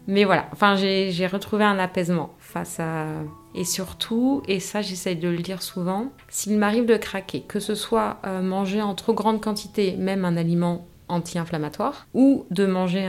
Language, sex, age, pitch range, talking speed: French, female, 30-49, 175-215 Hz, 170 wpm